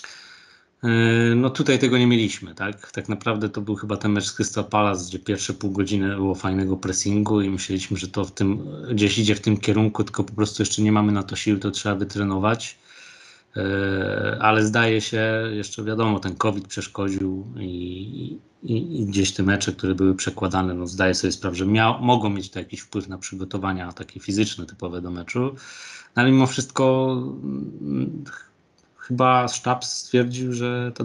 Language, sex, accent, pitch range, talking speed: Polish, male, native, 95-115 Hz, 170 wpm